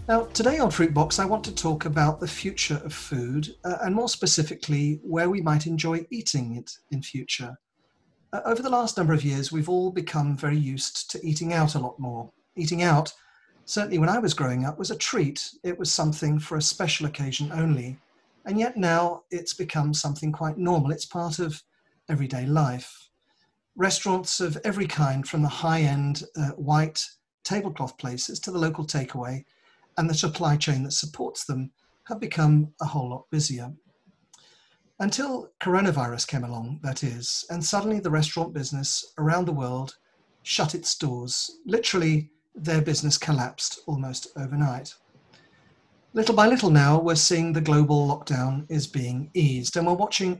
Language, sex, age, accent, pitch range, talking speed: English, male, 40-59, British, 145-175 Hz, 165 wpm